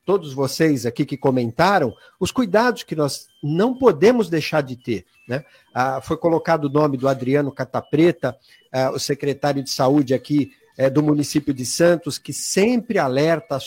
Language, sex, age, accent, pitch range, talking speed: Portuguese, male, 50-69, Brazilian, 135-170 Hz, 155 wpm